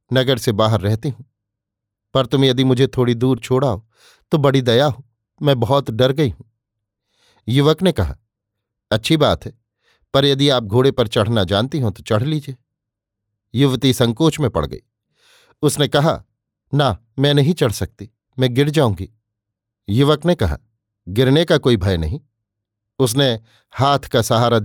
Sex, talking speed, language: male, 155 wpm, Hindi